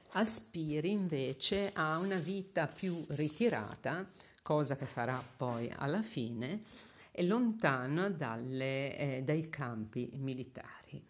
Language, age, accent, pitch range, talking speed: Italian, 50-69, native, 130-200 Hz, 105 wpm